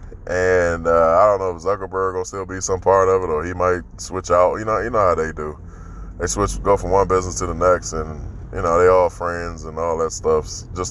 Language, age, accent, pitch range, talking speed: English, 20-39, American, 90-120 Hz, 240 wpm